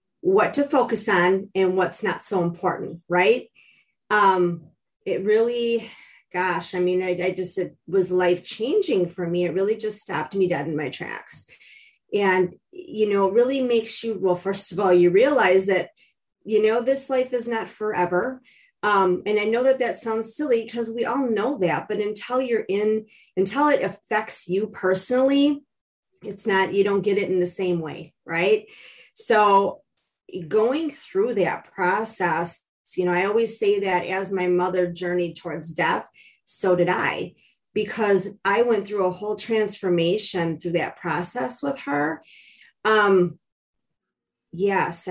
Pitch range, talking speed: 185-235 Hz, 160 wpm